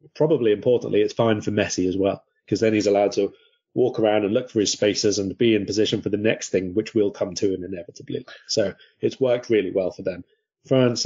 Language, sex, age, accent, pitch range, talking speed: English, male, 20-39, British, 100-130 Hz, 230 wpm